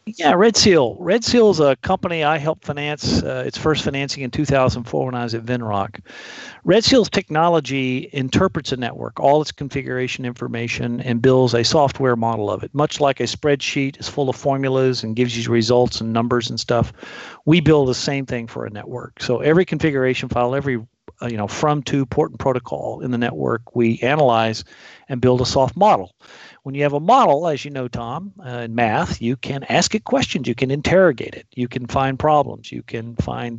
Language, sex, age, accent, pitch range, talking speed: English, male, 50-69, American, 120-145 Hz, 205 wpm